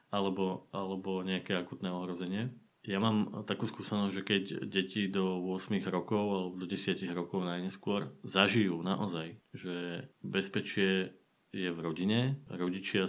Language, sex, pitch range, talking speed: Slovak, male, 90-105 Hz, 130 wpm